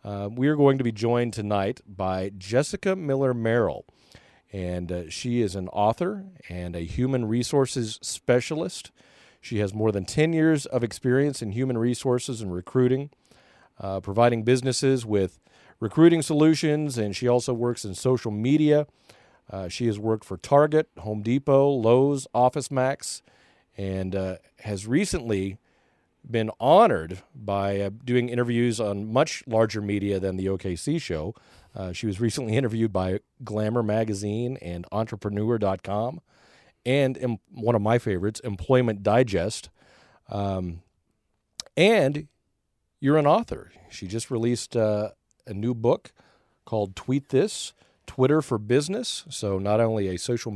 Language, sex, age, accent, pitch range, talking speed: English, male, 40-59, American, 100-130 Hz, 140 wpm